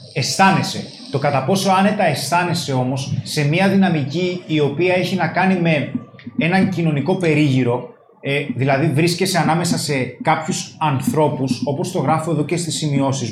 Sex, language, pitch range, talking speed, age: male, Greek, 140-175 Hz, 150 wpm, 20-39